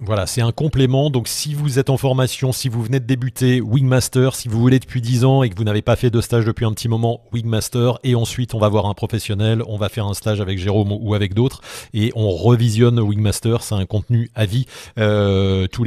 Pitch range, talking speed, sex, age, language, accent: 105-130 Hz, 240 wpm, male, 30-49, French, French